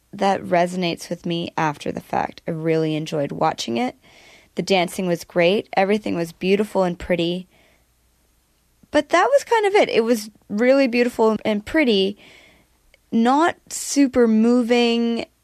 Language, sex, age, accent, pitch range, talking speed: English, female, 20-39, American, 175-220 Hz, 140 wpm